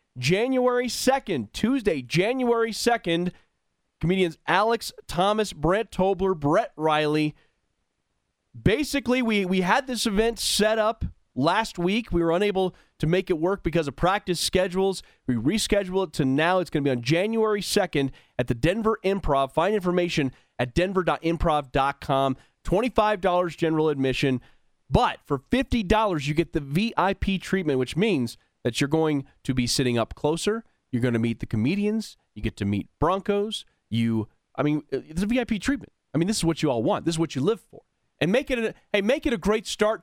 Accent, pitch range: American, 150-210 Hz